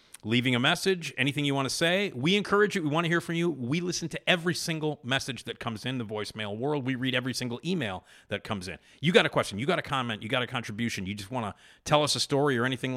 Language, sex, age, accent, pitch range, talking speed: English, male, 40-59, American, 110-150 Hz, 275 wpm